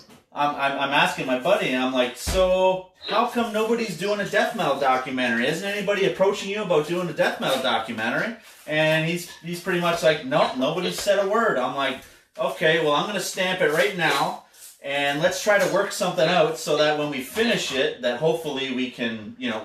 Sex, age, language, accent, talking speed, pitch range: male, 30-49, English, American, 205 wpm, 125-170 Hz